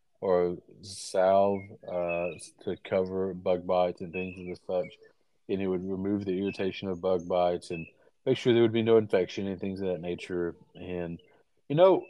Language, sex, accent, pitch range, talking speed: English, male, American, 95-110 Hz, 185 wpm